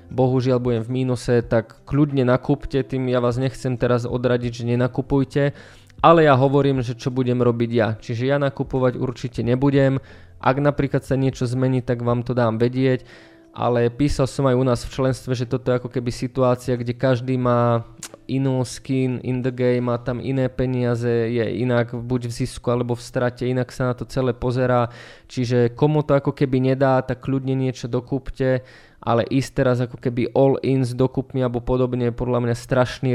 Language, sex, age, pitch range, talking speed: Slovak, male, 20-39, 120-130 Hz, 185 wpm